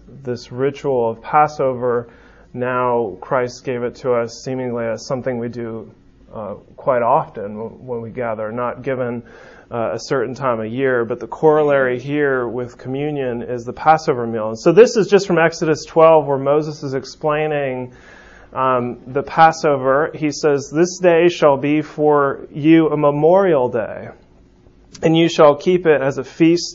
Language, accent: English, American